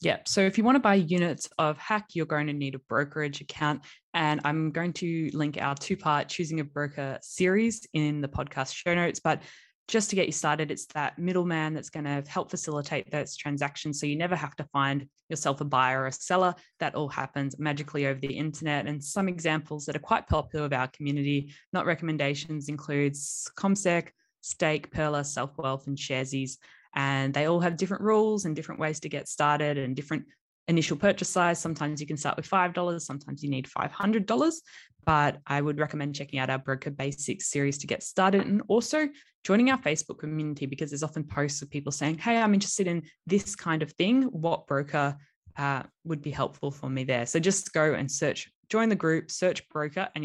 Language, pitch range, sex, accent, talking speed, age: English, 140-175 Hz, female, Australian, 200 wpm, 10-29